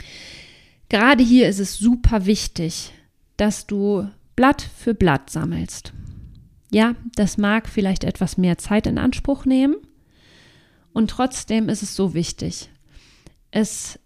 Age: 40-59